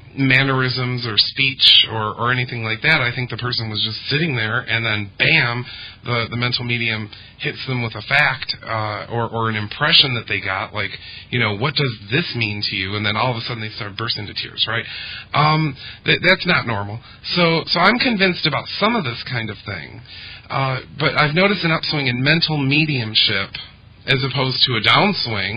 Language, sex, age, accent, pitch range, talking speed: English, male, 40-59, American, 110-135 Hz, 200 wpm